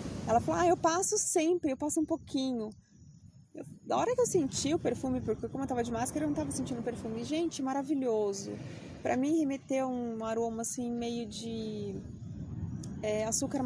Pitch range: 215-255 Hz